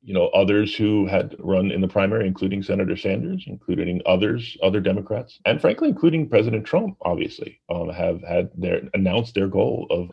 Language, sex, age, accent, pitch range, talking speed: English, male, 30-49, American, 90-105 Hz, 180 wpm